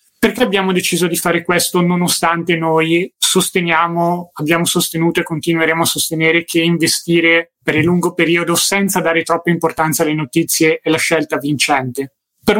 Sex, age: male, 20-39